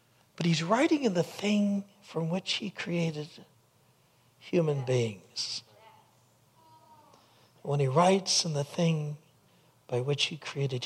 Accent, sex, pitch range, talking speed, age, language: American, male, 130-170 Hz, 120 wpm, 60-79, English